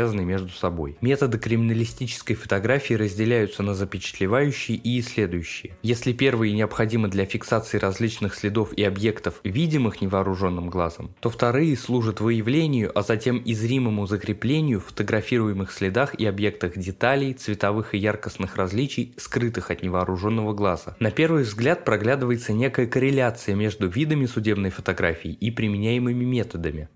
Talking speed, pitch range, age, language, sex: 125 wpm, 100-125 Hz, 20-39, Russian, male